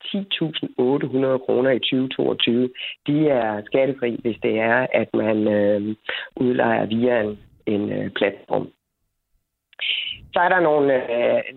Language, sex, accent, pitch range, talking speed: Danish, female, native, 110-140 Hz, 120 wpm